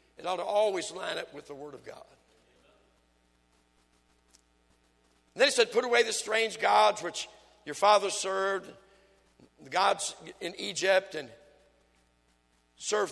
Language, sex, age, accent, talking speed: English, male, 60-79, American, 135 wpm